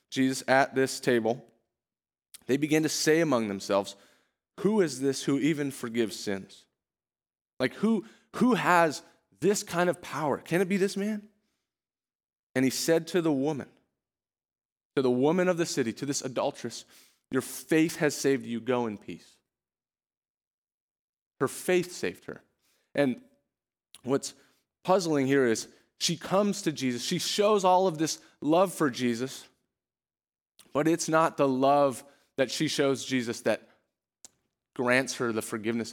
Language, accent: English, American